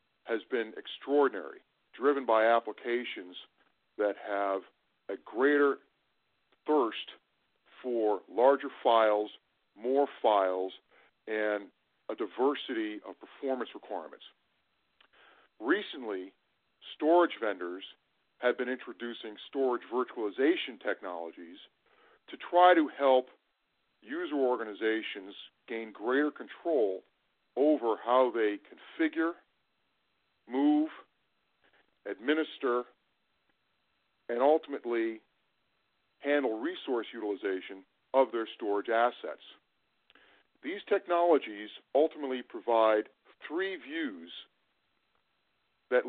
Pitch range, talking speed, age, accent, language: 115-160 Hz, 80 wpm, 50-69, American, English